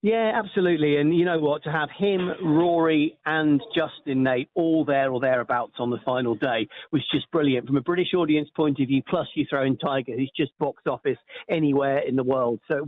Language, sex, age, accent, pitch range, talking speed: English, male, 50-69, British, 145-165 Hz, 215 wpm